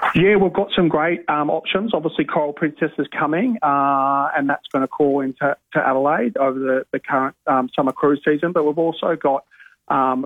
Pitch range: 125-145 Hz